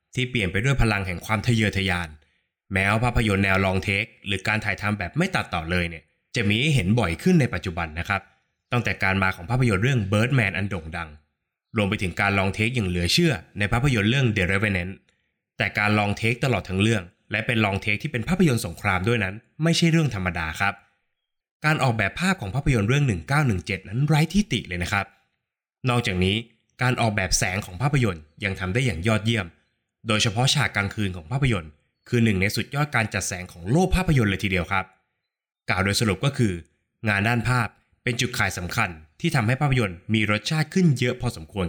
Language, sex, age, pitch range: Thai, male, 20-39, 95-125 Hz